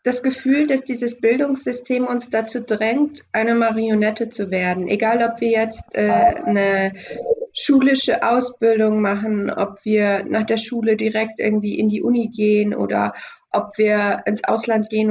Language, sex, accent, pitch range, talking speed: German, female, German, 215-255 Hz, 150 wpm